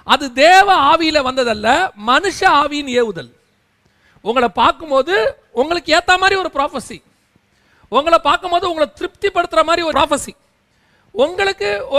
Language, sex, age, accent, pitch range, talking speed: Tamil, male, 40-59, native, 245-340 Hz, 110 wpm